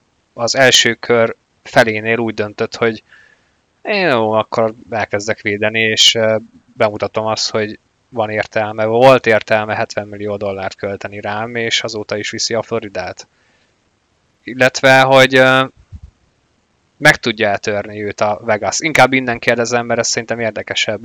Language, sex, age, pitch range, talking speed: Hungarian, male, 20-39, 105-125 Hz, 130 wpm